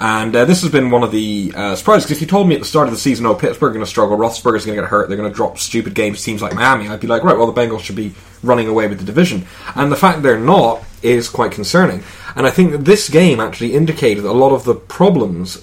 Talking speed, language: 290 wpm, English